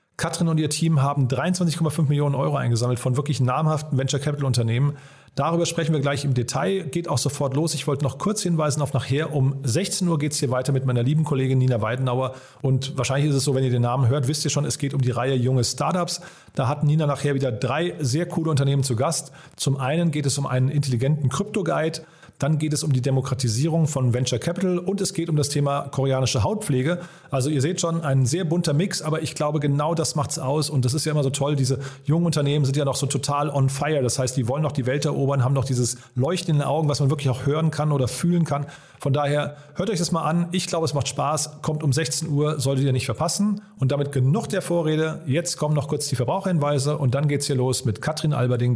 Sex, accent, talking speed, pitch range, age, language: male, German, 240 wpm, 130-155 Hz, 40-59, German